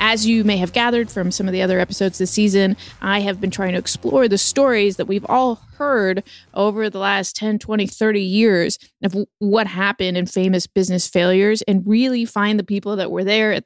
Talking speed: 210 wpm